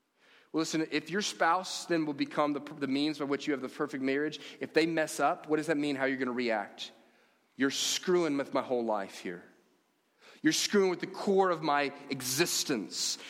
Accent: American